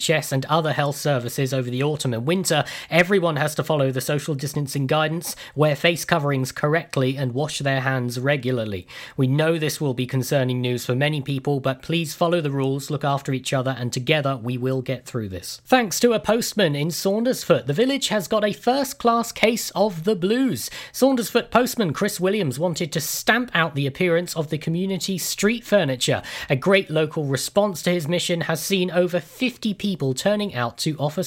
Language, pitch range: Japanese, 145-200 Hz